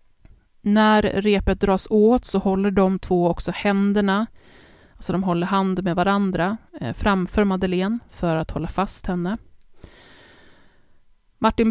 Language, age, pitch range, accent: Swedish, 30-49, 180-210 Hz, native